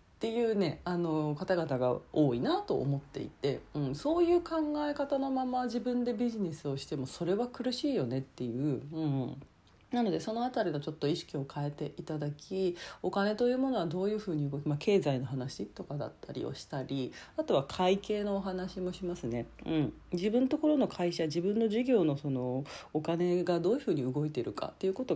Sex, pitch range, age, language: female, 135-200 Hz, 40-59, Japanese